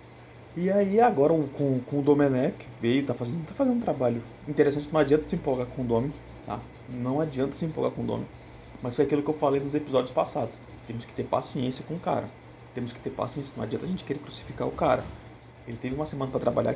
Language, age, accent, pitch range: Portuguese, 20-39, Brazilian, 130-160 Hz